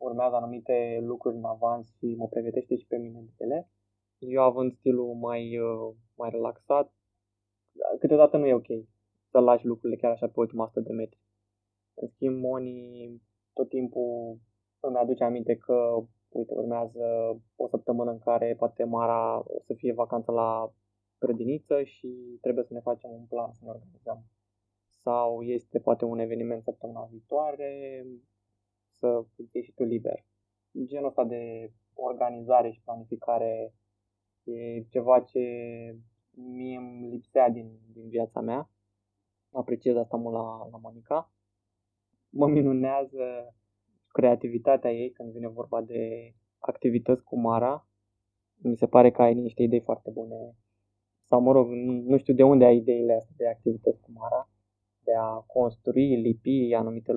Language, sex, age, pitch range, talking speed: Romanian, male, 20-39, 110-125 Hz, 145 wpm